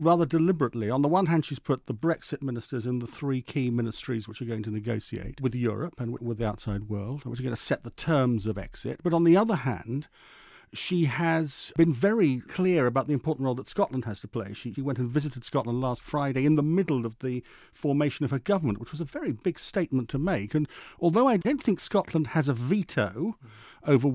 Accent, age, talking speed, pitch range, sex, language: British, 50-69, 225 wpm, 125-160 Hz, male, English